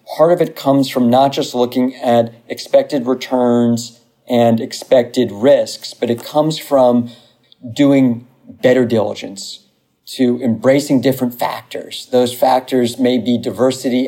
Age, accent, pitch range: 40-59, American, 120-140 Hz